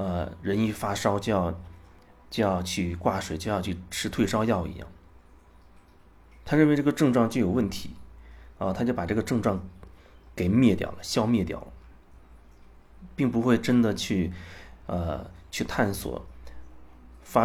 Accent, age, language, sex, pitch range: native, 30-49, Chinese, male, 70-110 Hz